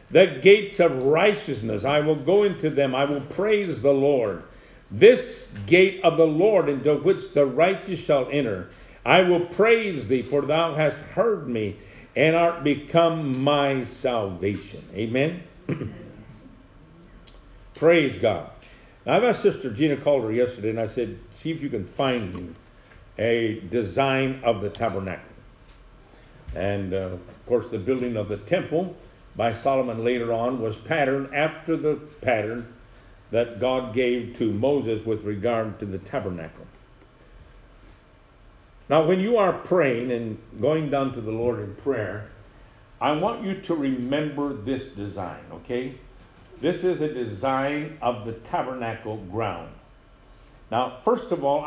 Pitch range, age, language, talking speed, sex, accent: 105-145 Hz, 50-69, English, 145 wpm, male, American